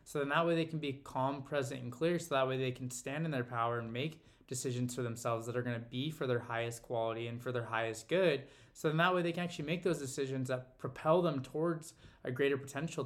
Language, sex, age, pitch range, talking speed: English, male, 20-39, 120-140 Hz, 255 wpm